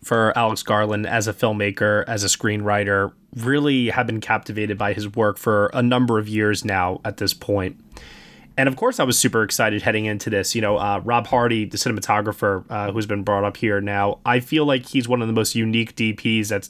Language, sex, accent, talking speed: English, male, American, 215 wpm